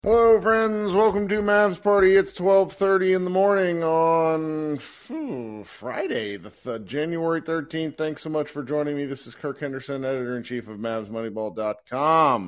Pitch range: 115-160 Hz